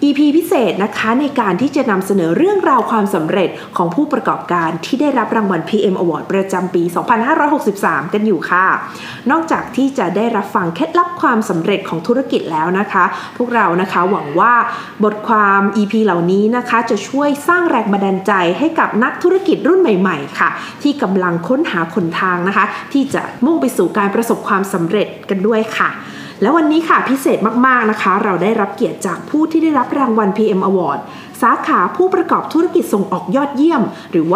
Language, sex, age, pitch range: Thai, female, 20-39, 195-270 Hz